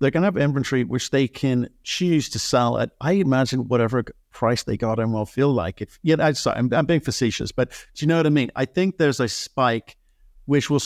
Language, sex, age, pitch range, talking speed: English, male, 50-69, 110-135 Hz, 225 wpm